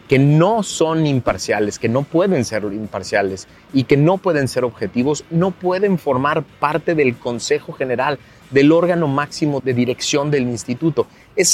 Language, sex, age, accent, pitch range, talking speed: Spanish, male, 30-49, Mexican, 115-160 Hz, 155 wpm